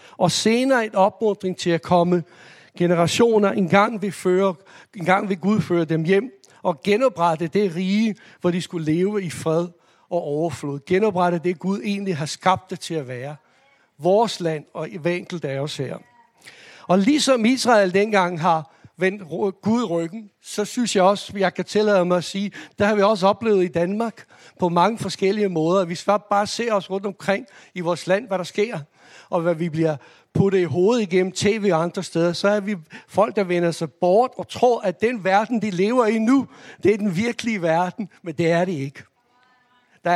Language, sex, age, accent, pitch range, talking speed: Danish, male, 60-79, native, 175-210 Hz, 200 wpm